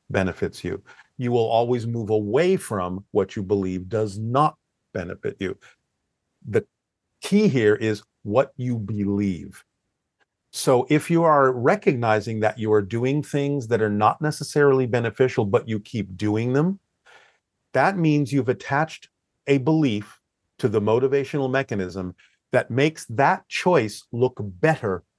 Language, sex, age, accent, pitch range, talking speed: English, male, 50-69, American, 105-145 Hz, 140 wpm